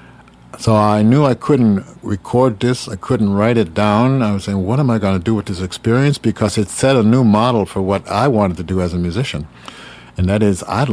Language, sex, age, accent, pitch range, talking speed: English, male, 60-79, American, 90-115 Hz, 235 wpm